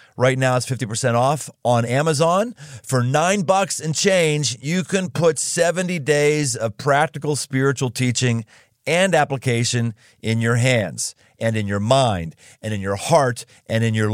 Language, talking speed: English, 155 wpm